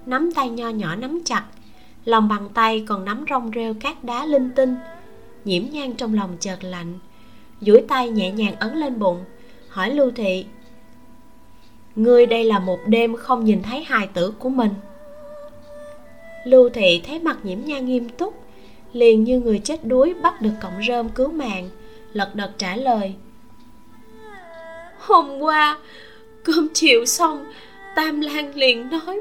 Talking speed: 160 wpm